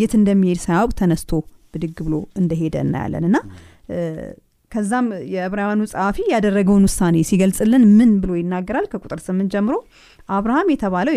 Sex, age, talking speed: female, 30-49, 105 wpm